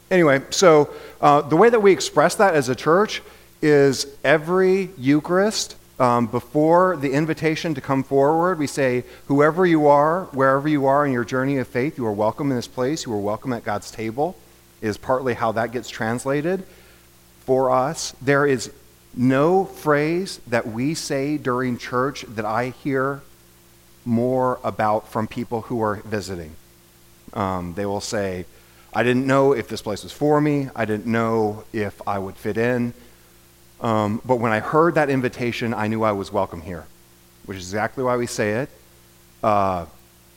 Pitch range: 105-140 Hz